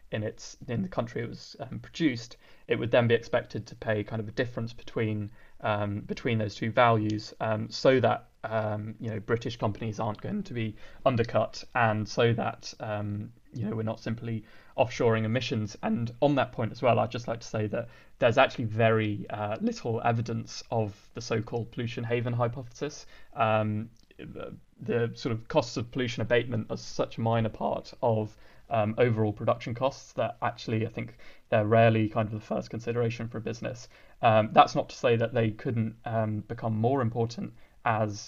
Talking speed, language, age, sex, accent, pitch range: 190 wpm, English, 20-39, male, British, 110-120 Hz